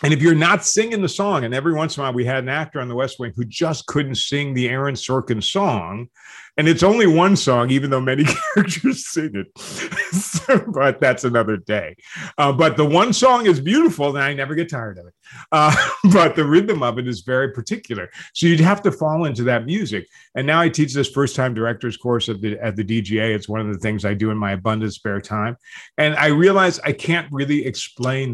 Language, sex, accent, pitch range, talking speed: English, male, American, 120-165 Hz, 225 wpm